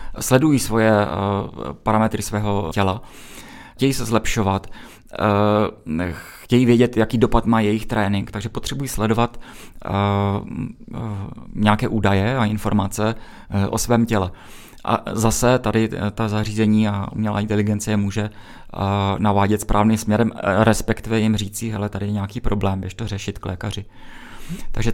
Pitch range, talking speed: 100-115 Hz, 125 wpm